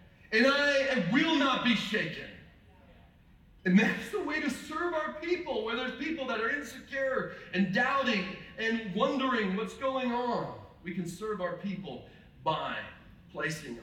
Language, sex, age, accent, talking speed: English, male, 40-59, American, 150 wpm